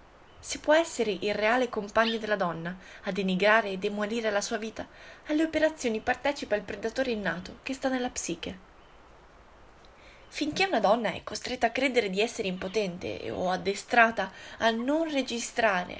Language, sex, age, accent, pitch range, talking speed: Italian, female, 20-39, native, 195-260 Hz, 150 wpm